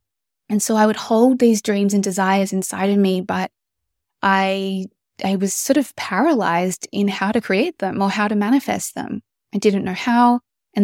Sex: female